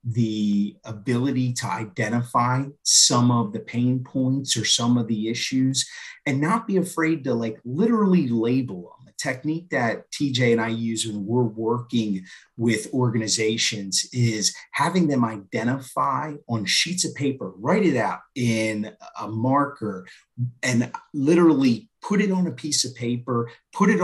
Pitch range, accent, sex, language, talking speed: 115-155 Hz, American, male, English, 150 wpm